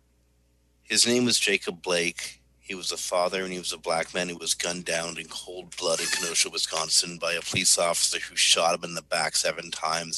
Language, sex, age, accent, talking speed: English, male, 50-69, American, 220 wpm